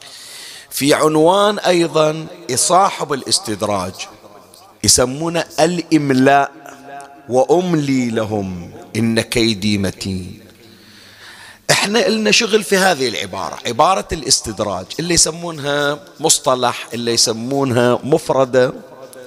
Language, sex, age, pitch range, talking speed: Arabic, male, 40-59, 120-160 Hz, 80 wpm